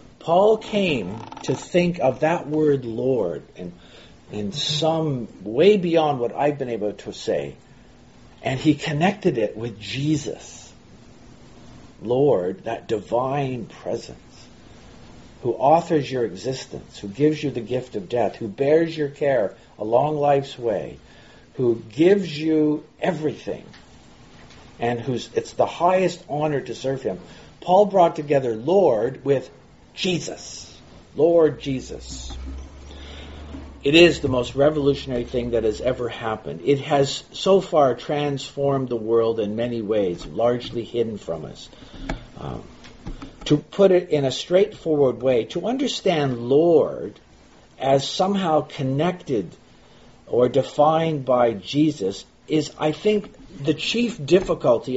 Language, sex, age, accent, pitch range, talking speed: English, male, 50-69, American, 120-160 Hz, 125 wpm